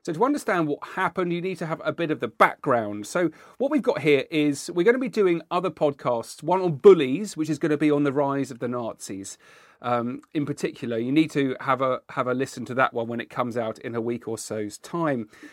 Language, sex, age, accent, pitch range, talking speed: English, male, 40-59, British, 120-170 Hz, 245 wpm